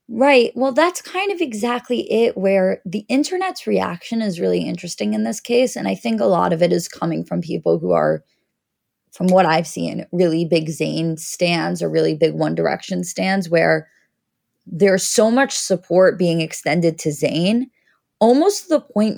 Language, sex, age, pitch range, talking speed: English, female, 20-39, 175-240 Hz, 180 wpm